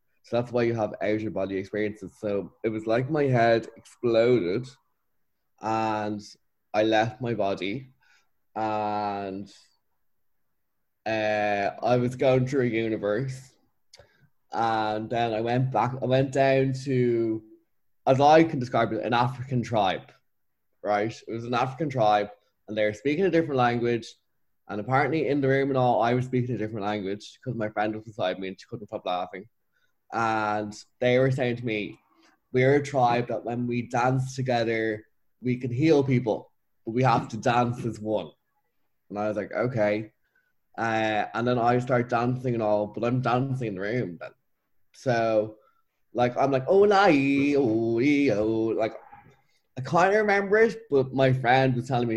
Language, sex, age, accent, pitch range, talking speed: English, male, 10-29, Irish, 110-130 Hz, 170 wpm